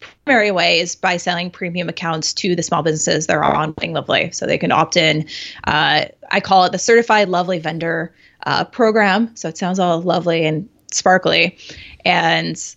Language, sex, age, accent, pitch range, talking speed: English, female, 20-39, American, 165-215 Hz, 185 wpm